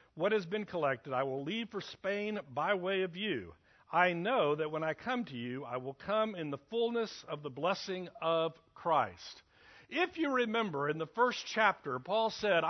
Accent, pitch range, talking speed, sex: American, 180-250 Hz, 195 wpm, male